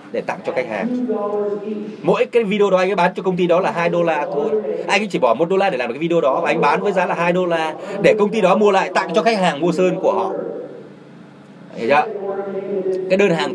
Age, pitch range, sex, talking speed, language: 20-39, 170-215 Hz, male, 265 wpm, Vietnamese